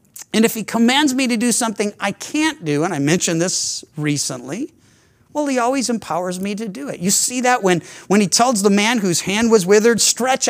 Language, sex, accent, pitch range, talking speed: English, male, American, 160-255 Hz, 215 wpm